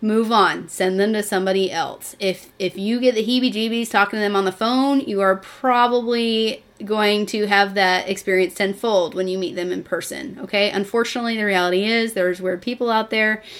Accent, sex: American, female